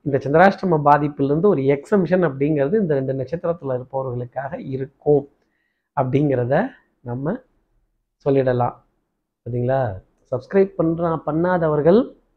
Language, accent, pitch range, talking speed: Tamil, native, 135-180 Hz, 85 wpm